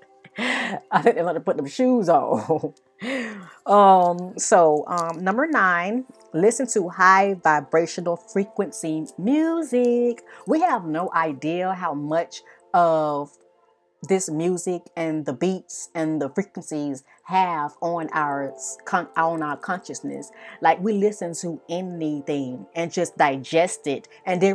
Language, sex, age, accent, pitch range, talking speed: English, female, 30-49, American, 165-230 Hz, 125 wpm